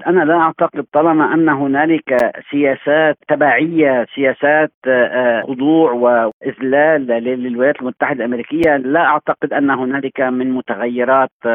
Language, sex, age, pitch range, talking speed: Arabic, male, 50-69, 140-170 Hz, 105 wpm